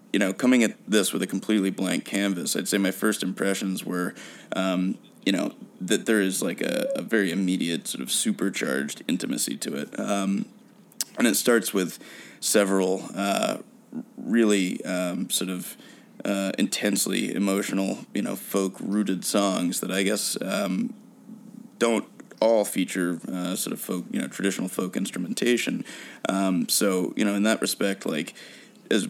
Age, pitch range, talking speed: 20-39, 95-115 Hz, 155 wpm